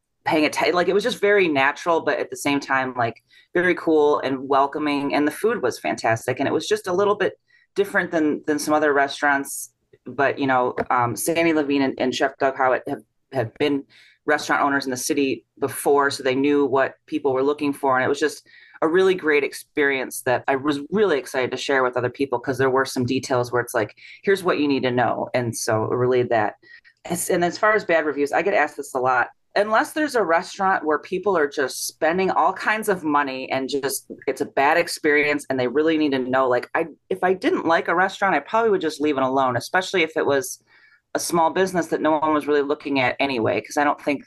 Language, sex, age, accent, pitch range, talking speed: English, female, 30-49, American, 130-170 Hz, 235 wpm